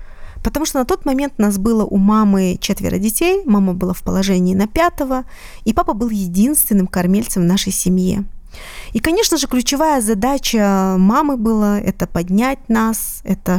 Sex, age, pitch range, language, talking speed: female, 20-39, 185-245 Hz, Russian, 165 wpm